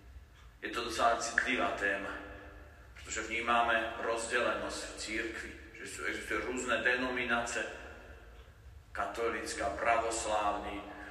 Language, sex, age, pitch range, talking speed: Slovak, male, 40-59, 105-130 Hz, 105 wpm